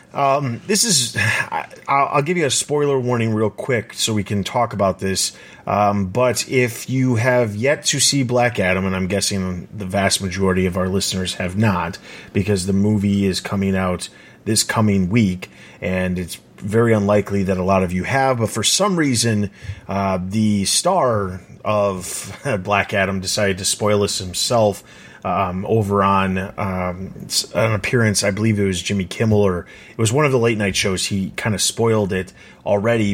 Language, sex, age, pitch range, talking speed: English, male, 30-49, 95-115 Hz, 180 wpm